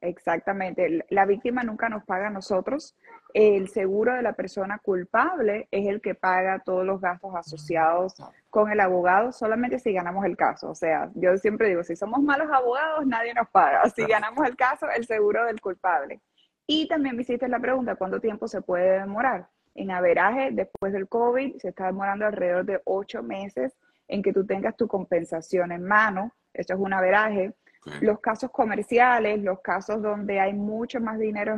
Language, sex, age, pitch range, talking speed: Spanish, female, 20-39, 185-225 Hz, 180 wpm